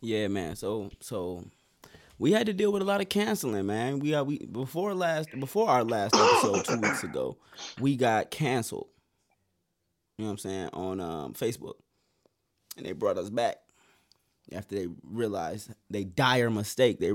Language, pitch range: English, 100-130 Hz